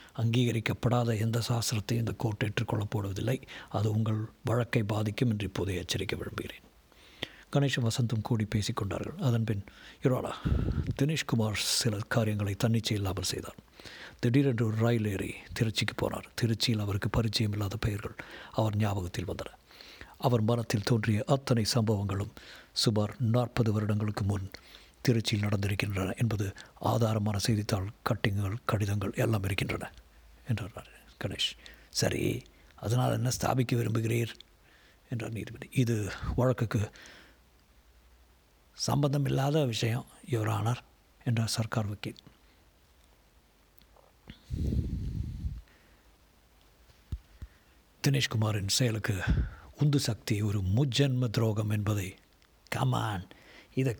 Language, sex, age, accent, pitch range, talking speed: Tamil, male, 60-79, native, 105-120 Hz, 90 wpm